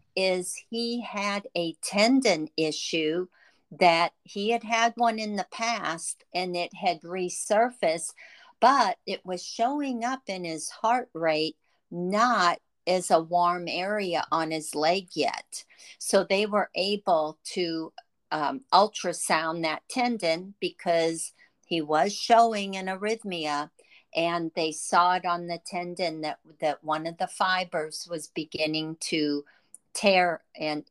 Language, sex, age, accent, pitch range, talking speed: English, female, 50-69, American, 160-190 Hz, 135 wpm